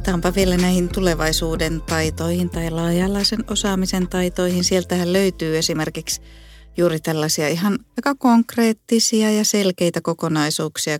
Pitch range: 160-205 Hz